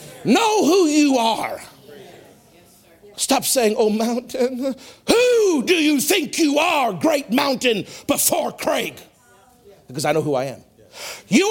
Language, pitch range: English, 210-295 Hz